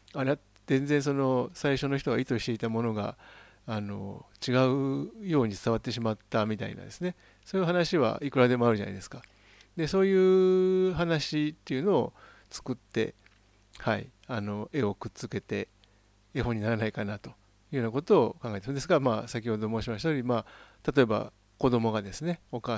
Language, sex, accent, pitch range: Japanese, male, native, 105-145 Hz